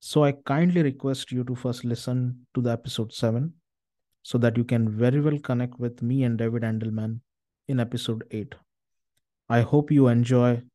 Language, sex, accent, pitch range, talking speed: English, male, Indian, 115-130 Hz, 175 wpm